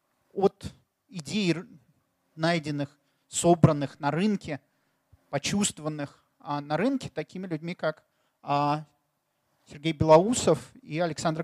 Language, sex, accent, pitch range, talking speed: Russian, male, native, 145-190 Hz, 85 wpm